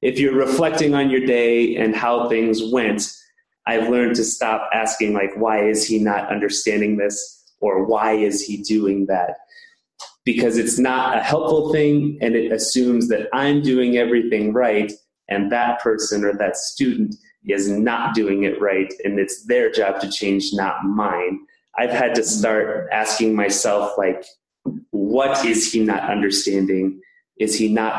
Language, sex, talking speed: English, male, 165 wpm